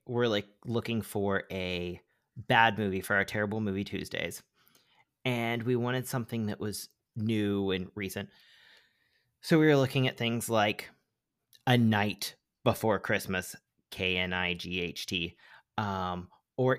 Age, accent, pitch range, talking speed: 30-49, American, 110-145 Hz, 145 wpm